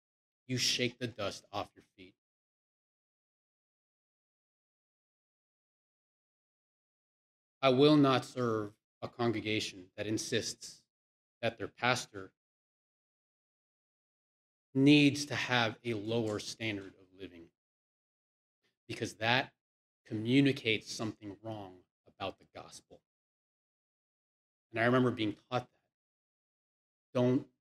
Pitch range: 110-150 Hz